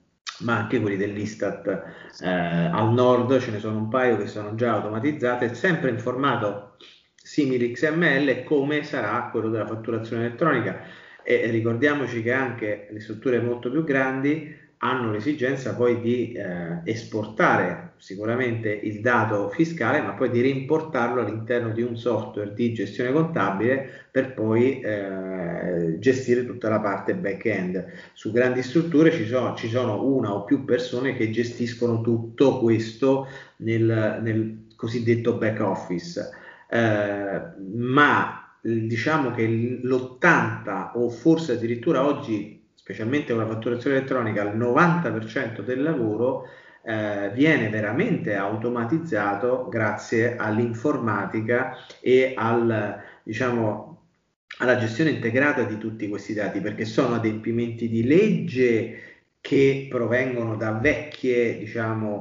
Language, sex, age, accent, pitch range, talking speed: Italian, male, 30-49, native, 110-130 Hz, 125 wpm